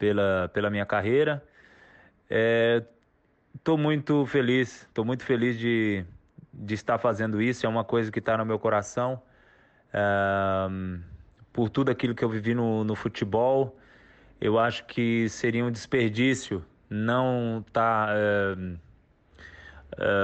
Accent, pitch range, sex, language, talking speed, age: Brazilian, 110-135 Hz, male, Portuguese, 130 wpm, 20-39